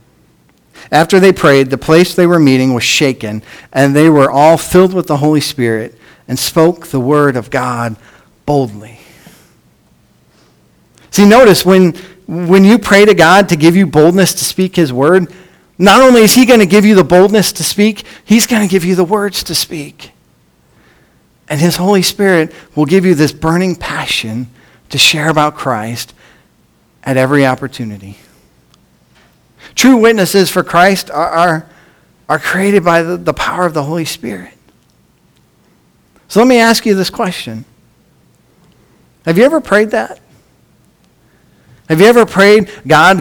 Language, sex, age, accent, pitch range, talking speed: English, male, 40-59, American, 145-190 Hz, 155 wpm